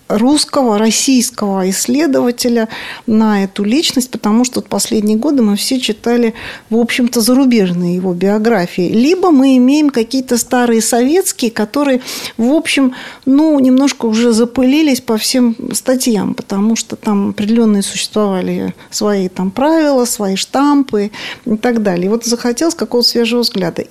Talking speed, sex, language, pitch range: 135 wpm, female, Russian, 215-260 Hz